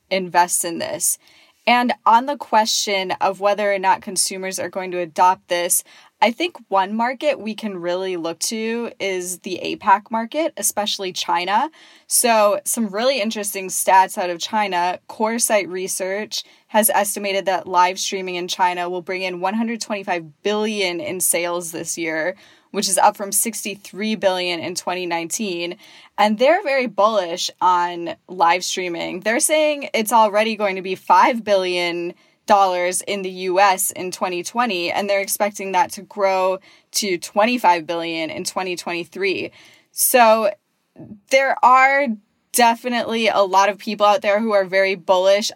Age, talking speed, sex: 10-29, 145 wpm, female